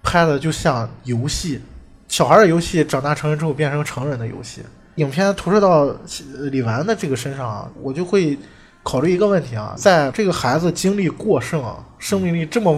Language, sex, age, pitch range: Chinese, male, 20-39, 130-190 Hz